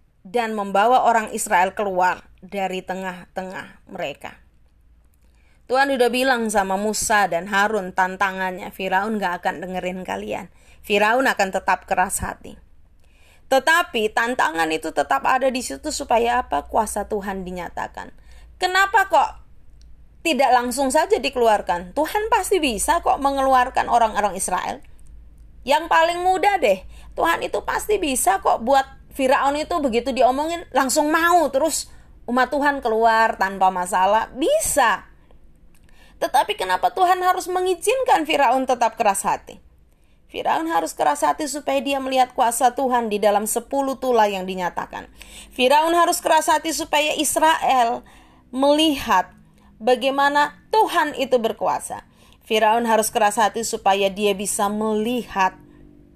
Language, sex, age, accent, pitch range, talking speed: Indonesian, female, 20-39, native, 190-280 Hz, 125 wpm